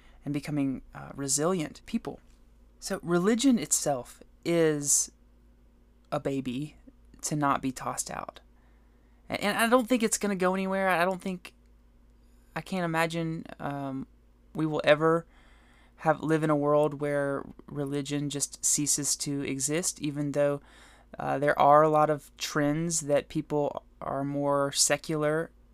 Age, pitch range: 20-39, 140-165 Hz